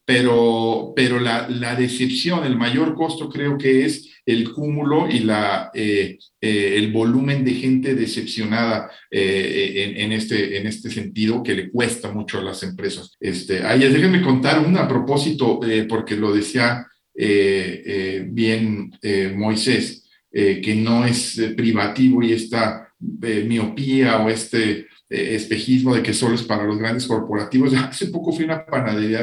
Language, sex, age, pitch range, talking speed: Spanish, male, 50-69, 110-130 Hz, 150 wpm